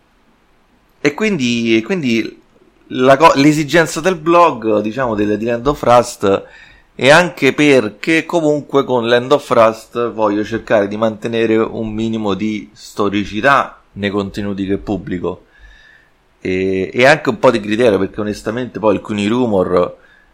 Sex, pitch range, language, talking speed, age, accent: male, 95-115 Hz, Italian, 140 wpm, 30-49, native